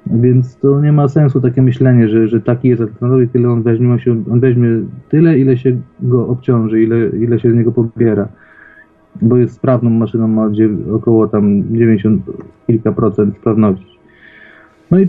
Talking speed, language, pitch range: 165 wpm, Polish, 115-130 Hz